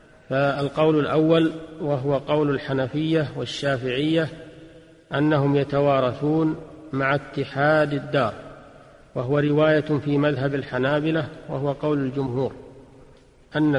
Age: 40-59